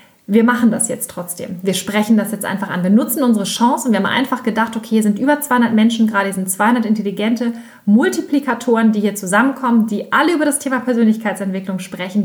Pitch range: 200-245 Hz